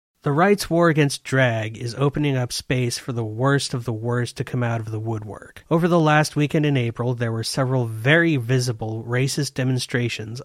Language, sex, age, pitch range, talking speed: English, male, 30-49, 120-145 Hz, 195 wpm